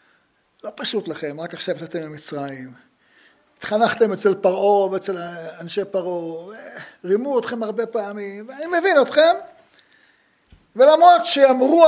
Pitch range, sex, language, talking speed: 220-295 Hz, male, Hebrew, 110 wpm